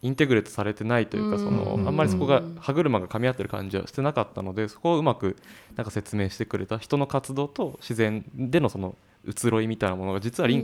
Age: 20-39